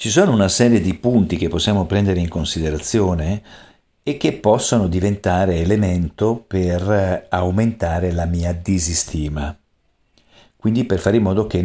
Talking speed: 140 wpm